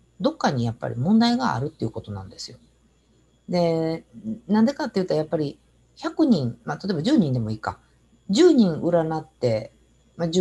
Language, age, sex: Japanese, 50-69, female